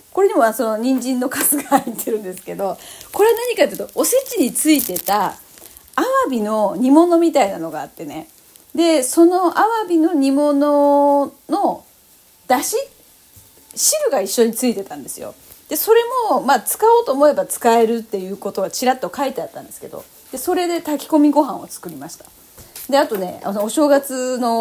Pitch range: 210-330 Hz